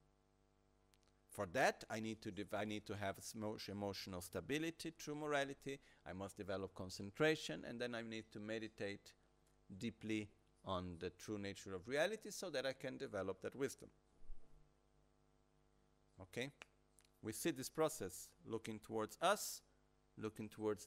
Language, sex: Italian, male